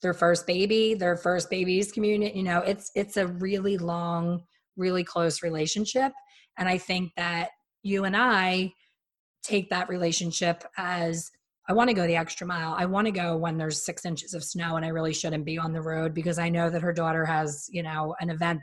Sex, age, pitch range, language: female, 30-49, 170-220 Hz, English